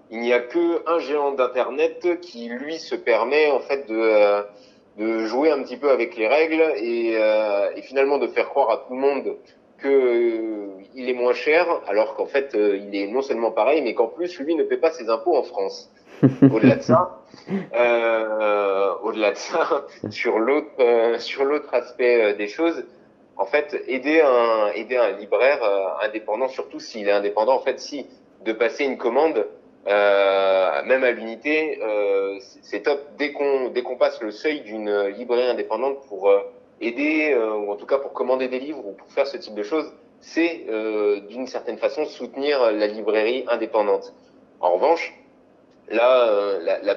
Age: 30-49